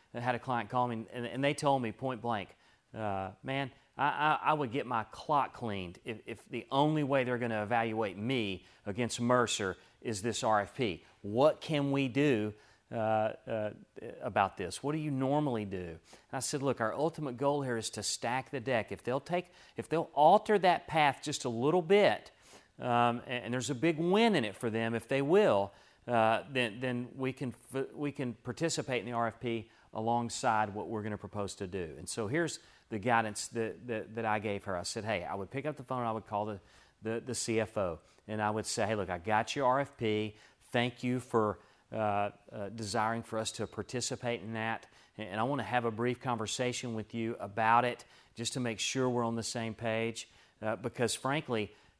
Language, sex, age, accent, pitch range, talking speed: English, male, 40-59, American, 110-135 Hz, 210 wpm